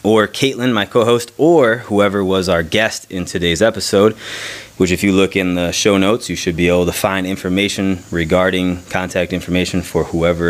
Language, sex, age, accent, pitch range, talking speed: English, male, 20-39, American, 85-100 Hz, 185 wpm